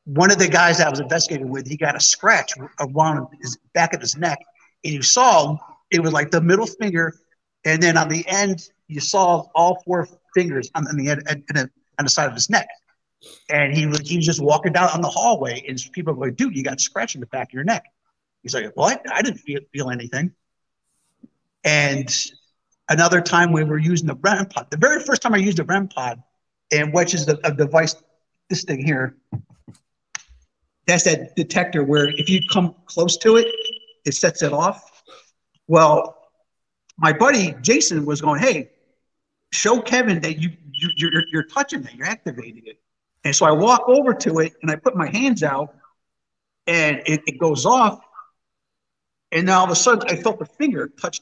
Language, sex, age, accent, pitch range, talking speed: English, male, 50-69, American, 150-190 Hz, 200 wpm